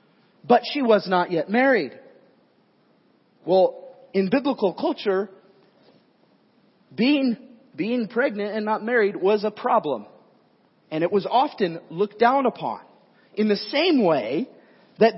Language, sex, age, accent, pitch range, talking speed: English, male, 40-59, American, 195-260 Hz, 125 wpm